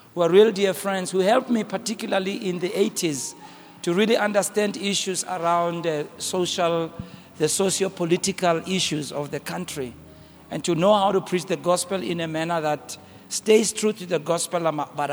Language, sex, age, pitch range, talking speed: English, male, 60-79, 155-195 Hz, 175 wpm